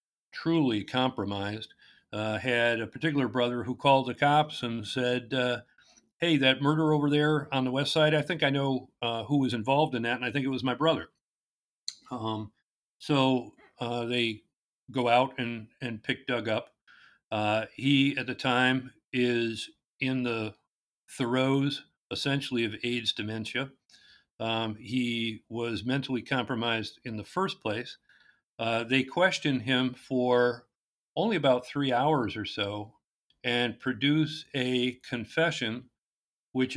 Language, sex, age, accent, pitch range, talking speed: English, male, 50-69, American, 115-135 Hz, 145 wpm